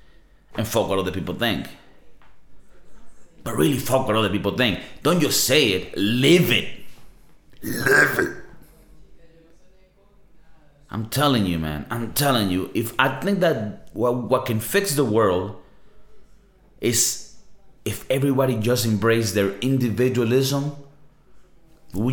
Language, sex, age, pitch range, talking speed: English, male, 30-49, 105-150 Hz, 125 wpm